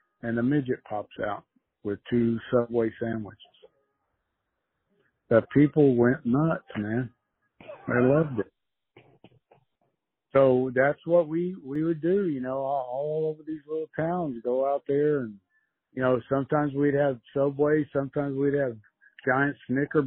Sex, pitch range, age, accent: male, 120-155 Hz, 50-69, American